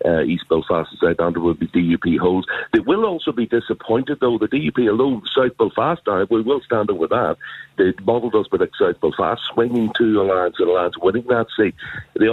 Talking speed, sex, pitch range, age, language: 210 wpm, male, 90-110 Hz, 60-79, English